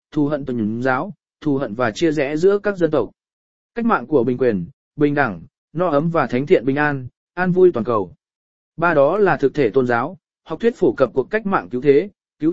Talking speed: 230 wpm